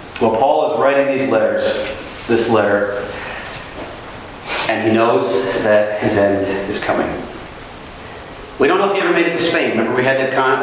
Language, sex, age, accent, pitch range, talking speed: English, male, 40-59, American, 110-140 Hz, 175 wpm